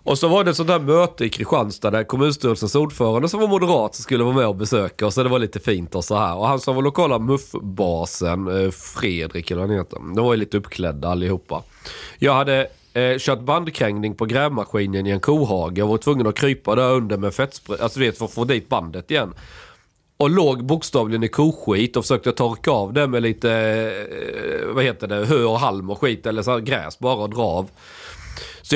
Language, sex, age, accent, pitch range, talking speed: Swedish, male, 40-59, native, 105-140 Hz, 215 wpm